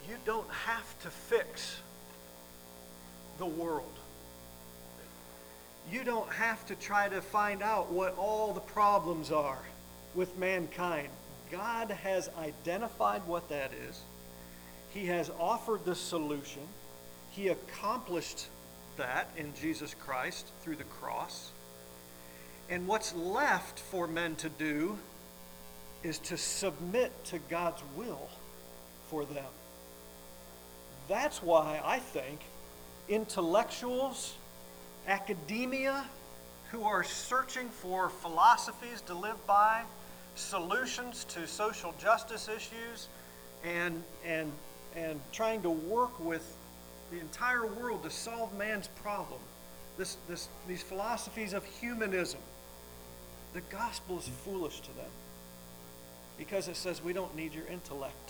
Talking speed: 110 wpm